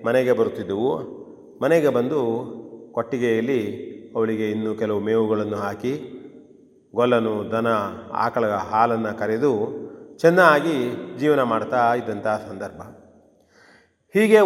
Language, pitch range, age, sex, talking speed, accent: Kannada, 110-155 Hz, 30-49, male, 85 wpm, native